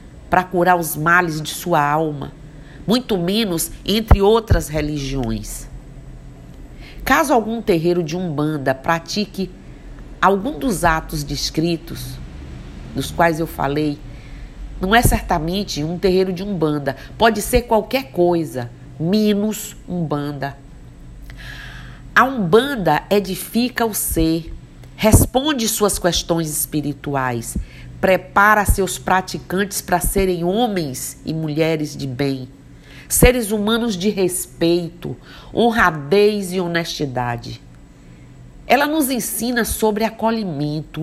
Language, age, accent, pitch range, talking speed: Portuguese, 50-69, Brazilian, 145-200 Hz, 100 wpm